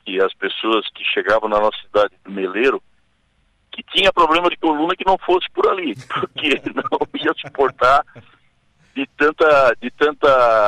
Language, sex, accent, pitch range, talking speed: Portuguese, male, Brazilian, 130-190 Hz, 155 wpm